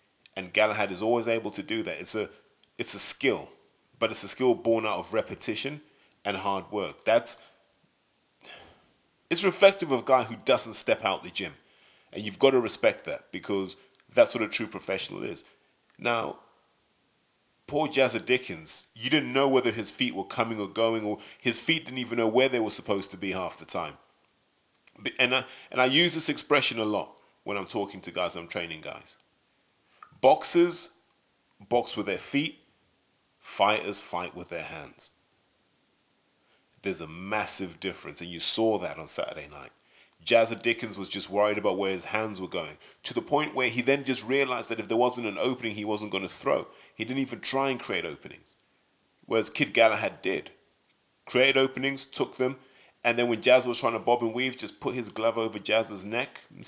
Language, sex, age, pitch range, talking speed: English, male, 30-49, 105-130 Hz, 190 wpm